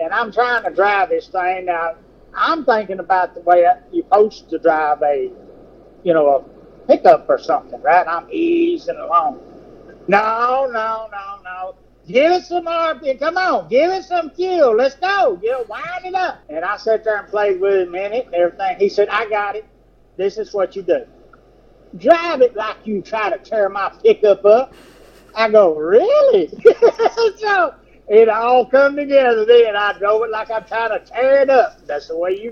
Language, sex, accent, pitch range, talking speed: English, male, American, 185-305 Hz, 190 wpm